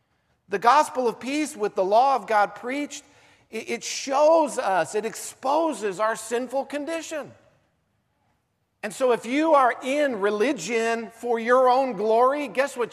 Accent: American